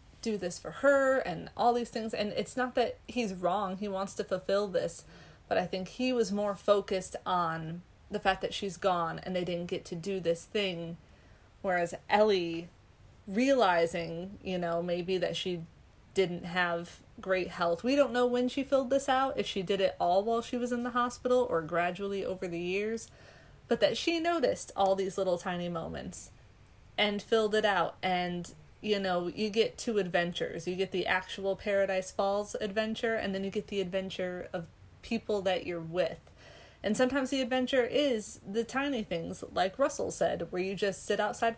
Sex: female